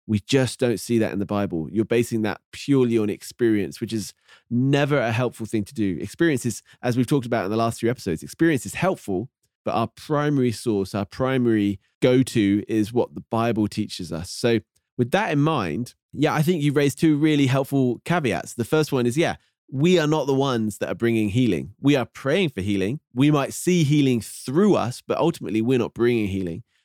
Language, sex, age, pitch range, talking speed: English, male, 20-39, 110-140 Hz, 210 wpm